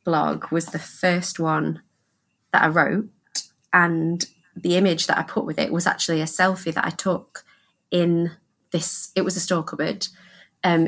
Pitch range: 155-190 Hz